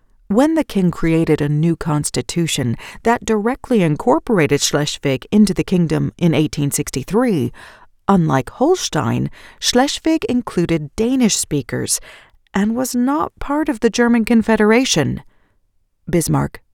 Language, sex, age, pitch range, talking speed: English, female, 40-59, 150-220 Hz, 110 wpm